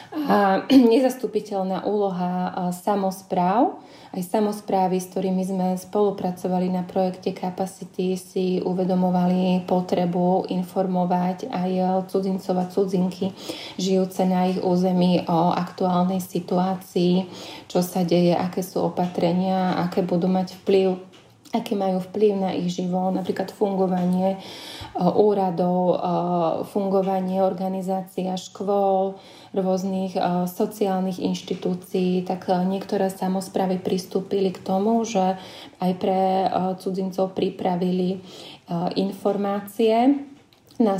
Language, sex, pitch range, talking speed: Slovak, female, 185-195 Hz, 105 wpm